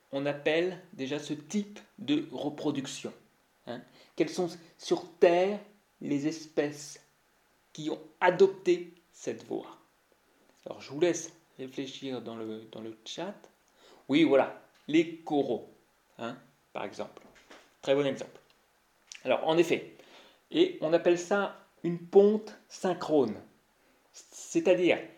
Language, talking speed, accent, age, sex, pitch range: French, 120 wpm, French, 30-49, male, 150-205 Hz